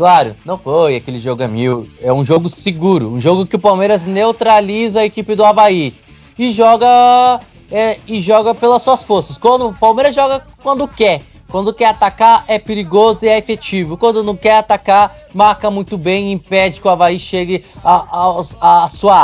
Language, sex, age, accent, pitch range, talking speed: Portuguese, male, 20-39, Brazilian, 165-220 Hz, 190 wpm